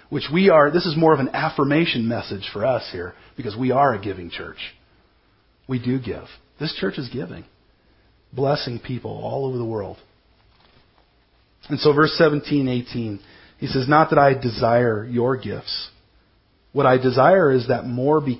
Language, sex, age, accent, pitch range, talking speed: English, male, 40-59, American, 110-150 Hz, 170 wpm